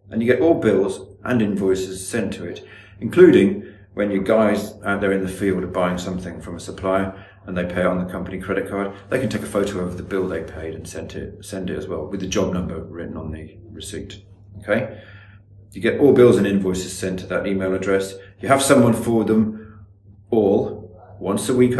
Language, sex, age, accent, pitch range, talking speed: English, male, 40-59, British, 95-105 Hz, 215 wpm